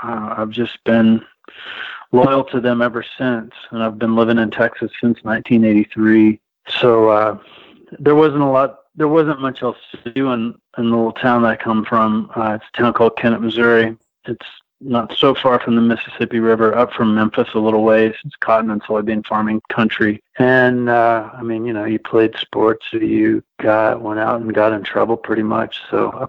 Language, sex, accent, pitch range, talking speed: English, male, American, 110-125 Hz, 200 wpm